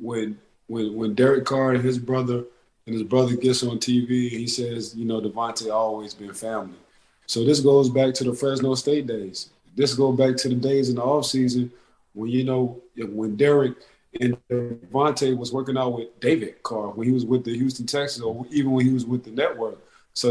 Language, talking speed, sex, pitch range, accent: English, 205 wpm, male, 120-135 Hz, American